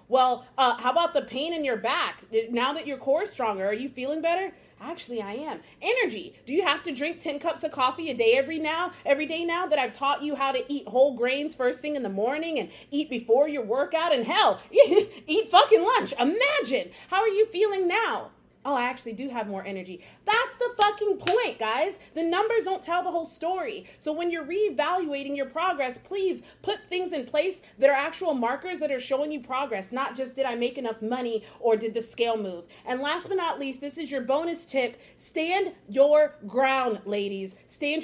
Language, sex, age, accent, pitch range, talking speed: English, female, 30-49, American, 240-325 Hz, 215 wpm